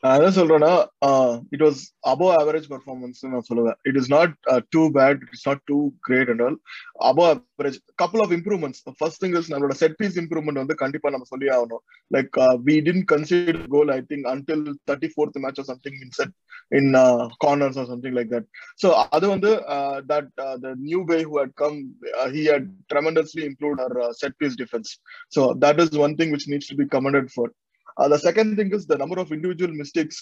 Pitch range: 135-165 Hz